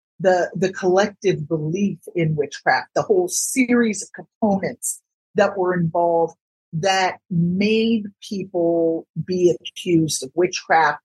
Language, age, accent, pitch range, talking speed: English, 50-69, American, 165-215 Hz, 115 wpm